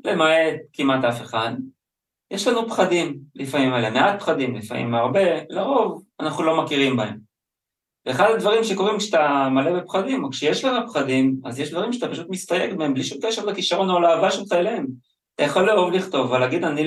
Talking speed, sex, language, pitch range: 175 wpm, male, Hebrew, 130-180 Hz